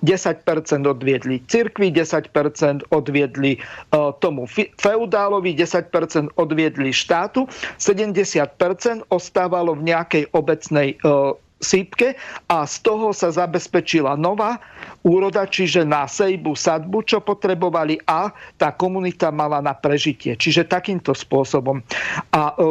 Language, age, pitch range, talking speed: Slovak, 50-69, 150-185 Hz, 110 wpm